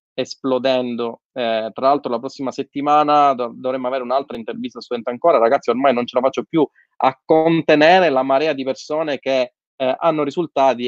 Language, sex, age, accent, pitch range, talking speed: Italian, male, 20-39, native, 125-160 Hz, 170 wpm